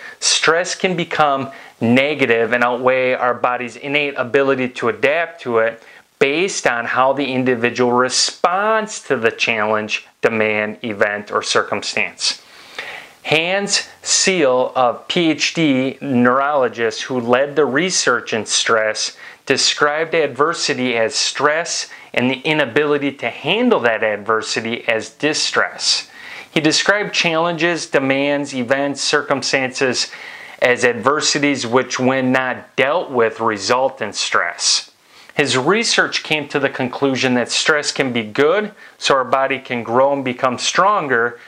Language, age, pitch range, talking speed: English, 30-49, 120-155 Hz, 125 wpm